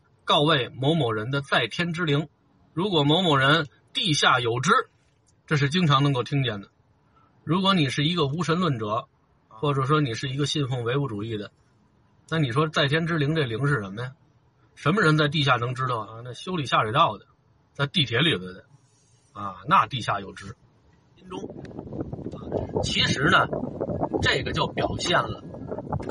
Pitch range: 125-155 Hz